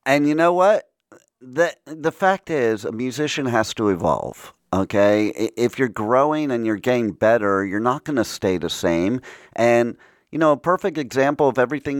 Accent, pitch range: American, 100-130 Hz